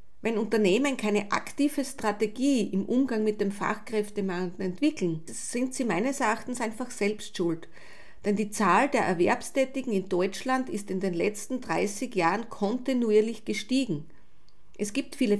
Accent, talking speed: Austrian, 140 wpm